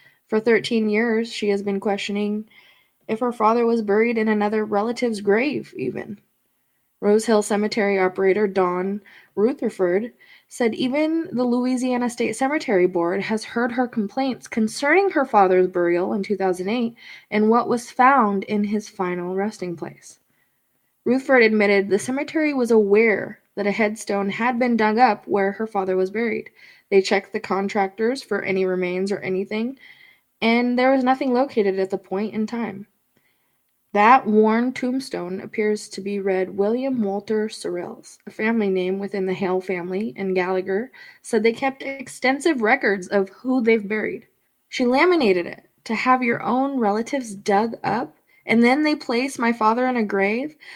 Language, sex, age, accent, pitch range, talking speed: English, female, 20-39, American, 200-250 Hz, 155 wpm